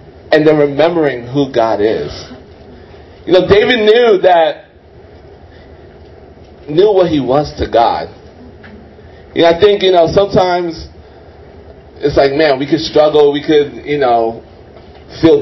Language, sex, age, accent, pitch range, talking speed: English, male, 30-49, American, 120-170 Hz, 135 wpm